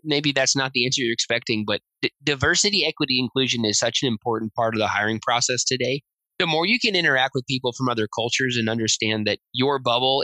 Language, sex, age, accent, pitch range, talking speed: English, male, 20-39, American, 115-145 Hz, 210 wpm